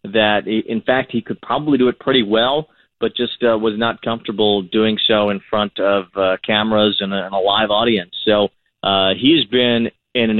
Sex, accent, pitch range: male, American, 100-120 Hz